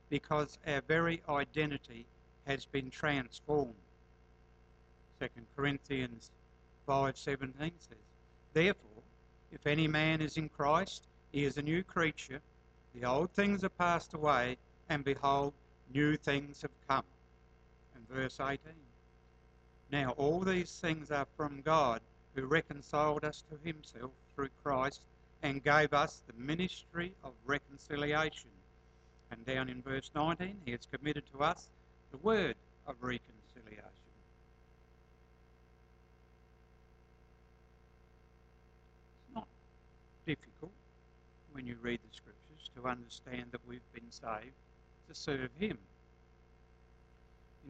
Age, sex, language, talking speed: 60-79, male, English, 115 wpm